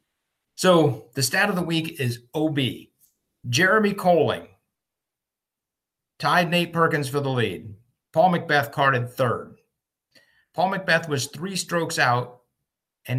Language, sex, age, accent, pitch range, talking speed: English, male, 50-69, American, 120-160 Hz, 125 wpm